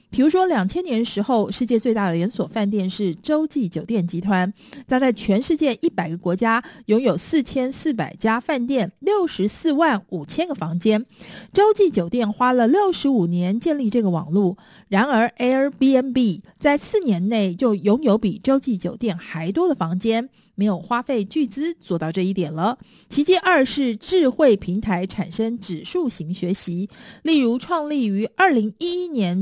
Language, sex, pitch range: Chinese, female, 195-275 Hz